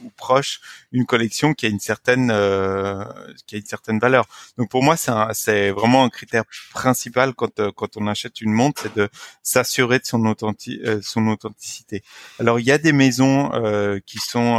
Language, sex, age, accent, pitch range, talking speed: French, male, 30-49, French, 105-130 Hz, 200 wpm